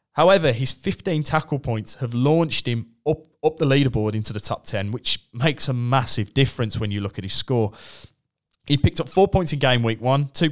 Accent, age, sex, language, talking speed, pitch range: British, 20-39, male, English, 210 wpm, 115-150 Hz